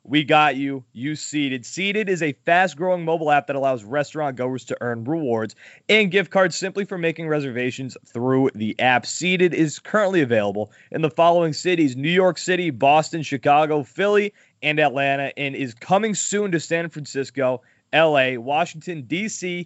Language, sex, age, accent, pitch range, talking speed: English, male, 30-49, American, 140-190 Hz, 170 wpm